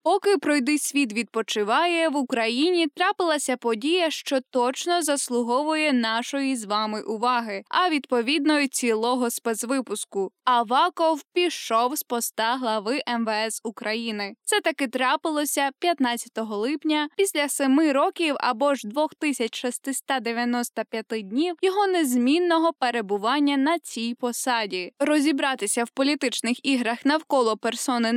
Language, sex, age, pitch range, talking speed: Ukrainian, female, 10-29, 230-305 Hz, 105 wpm